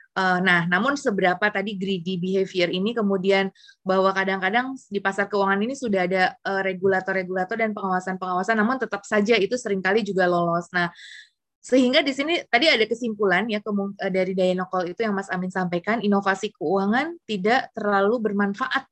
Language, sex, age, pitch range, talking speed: Indonesian, female, 20-39, 185-215 Hz, 145 wpm